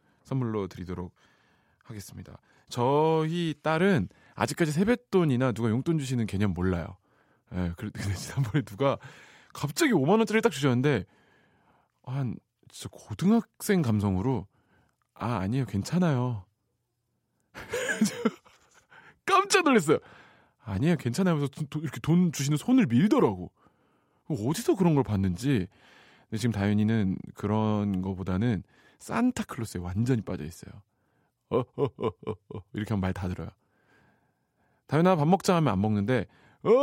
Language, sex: Korean, male